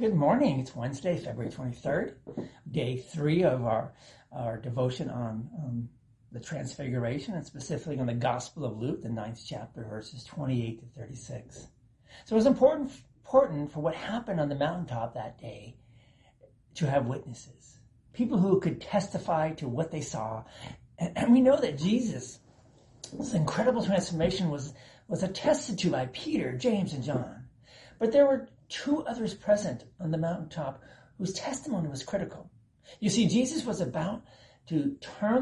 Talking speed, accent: 155 wpm, American